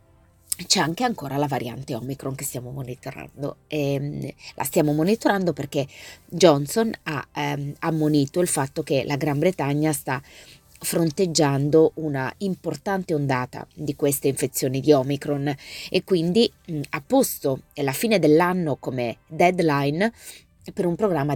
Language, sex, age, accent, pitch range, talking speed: Italian, female, 20-39, native, 135-170 Hz, 130 wpm